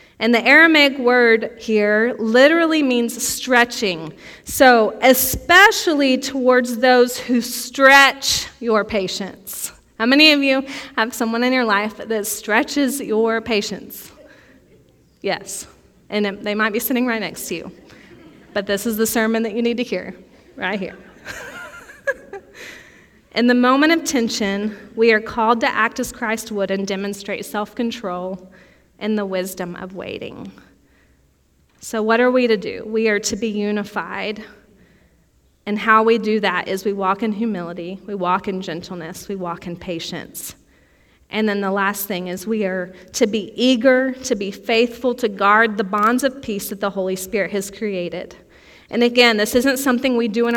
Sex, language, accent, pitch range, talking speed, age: female, English, American, 195-245 Hz, 160 wpm, 30-49